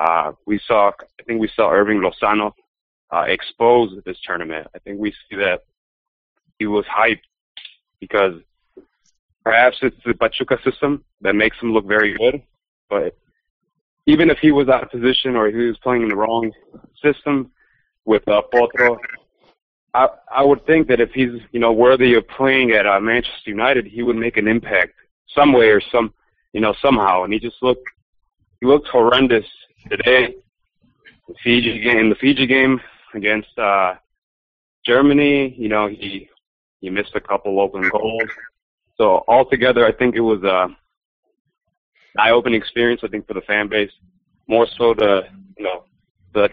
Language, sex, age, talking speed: English, male, 30-49, 165 wpm